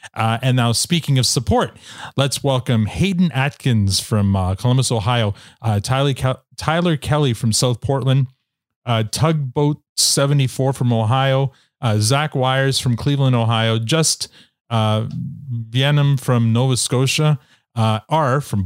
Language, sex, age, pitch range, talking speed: English, male, 30-49, 115-155 Hz, 135 wpm